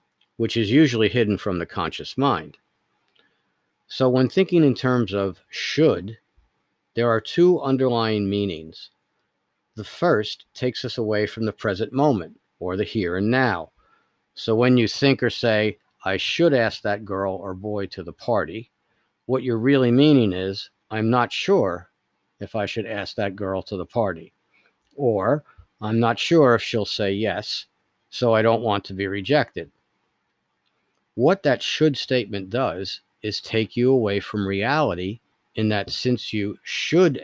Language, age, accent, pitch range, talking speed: English, 50-69, American, 100-125 Hz, 160 wpm